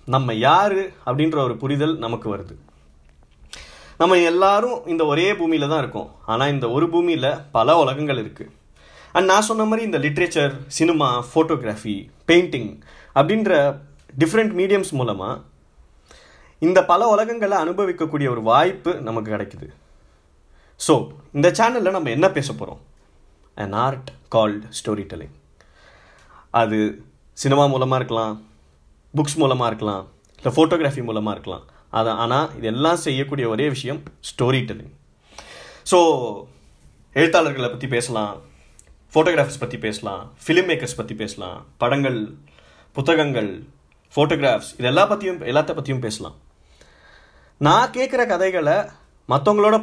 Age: 20-39